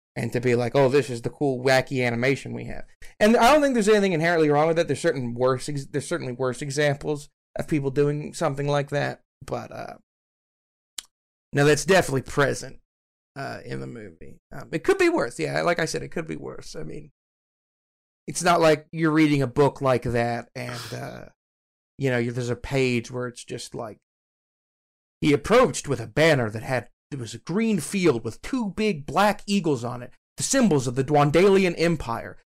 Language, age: English, 30-49